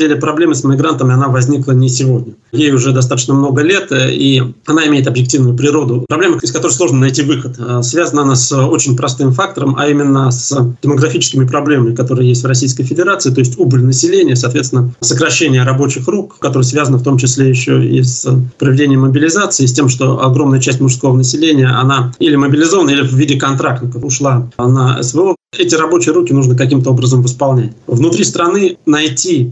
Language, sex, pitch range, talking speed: Russian, male, 130-150 Hz, 170 wpm